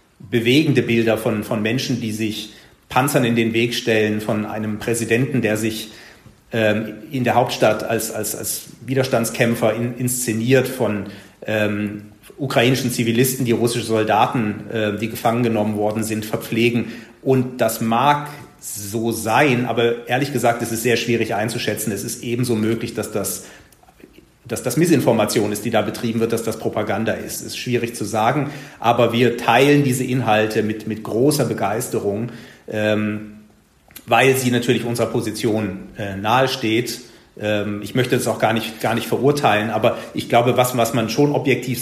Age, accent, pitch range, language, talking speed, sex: 40-59, German, 110-125 Hz, German, 160 wpm, male